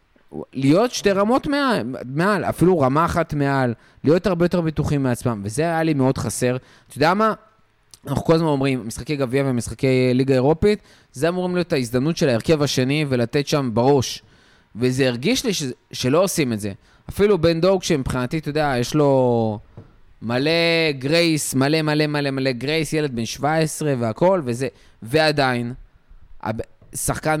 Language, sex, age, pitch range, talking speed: Hebrew, male, 20-39, 125-165 Hz, 155 wpm